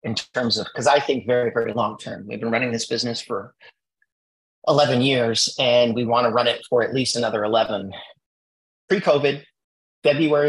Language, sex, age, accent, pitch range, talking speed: English, male, 30-49, American, 115-150 Hz, 170 wpm